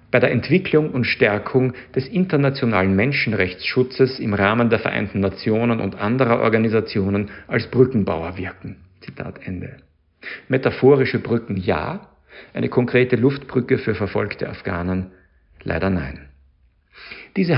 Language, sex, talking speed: German, male, 115 wpm